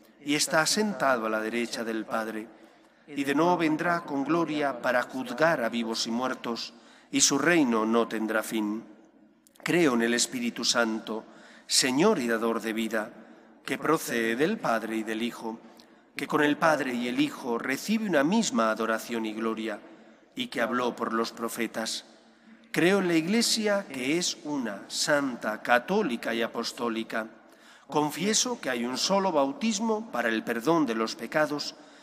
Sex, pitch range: male, 115-165 Hz